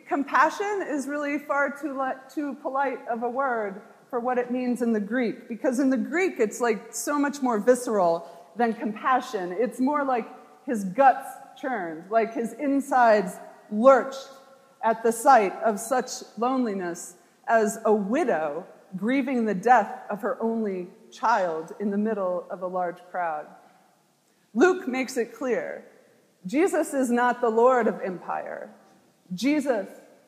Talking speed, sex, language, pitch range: 145 wpm, female, English, 225-275 Hz